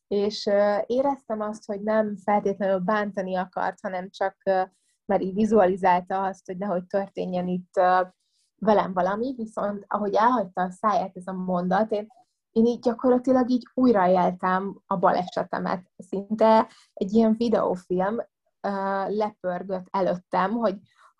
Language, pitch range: Hungarian, 185-220 Hz